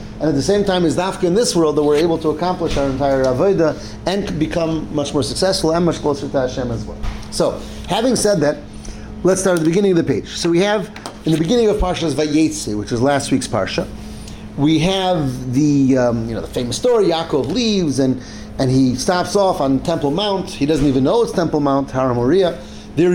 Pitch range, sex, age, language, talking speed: 135-185 Hz, male, 40-59, English, 220 wpm